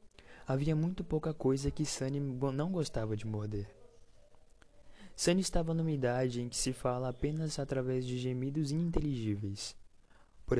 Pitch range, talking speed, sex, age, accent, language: 110-150 Hz, 135 wpm, male, 20-39, Brazilian, Portuguese